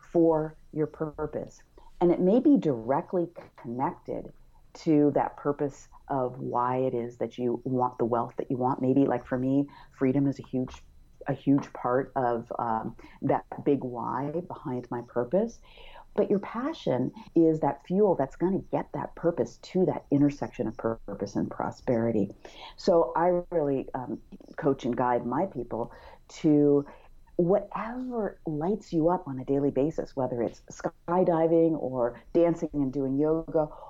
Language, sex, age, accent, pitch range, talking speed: English, female, 40-59, American, 130-175 Hz, 155 wpm